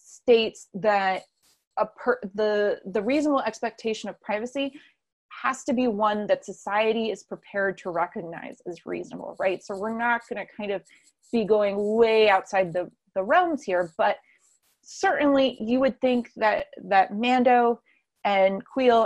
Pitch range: 195-240 Hz